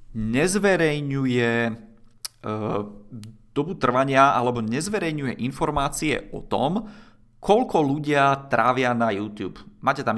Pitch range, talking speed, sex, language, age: 110-145 Hz, 95 wpm, male, Czech, 30-49